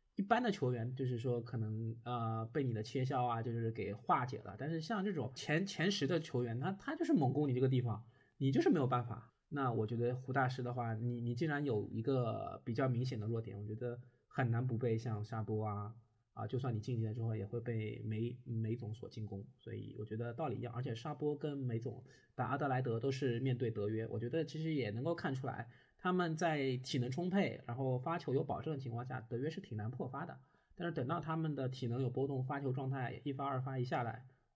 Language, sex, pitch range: Chinese, male, 115-135 Hz